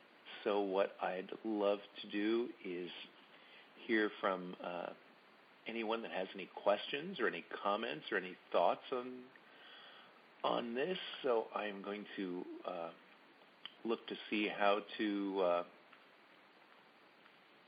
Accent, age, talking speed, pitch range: American, 50-69, 120 wpm, 100-120 Hz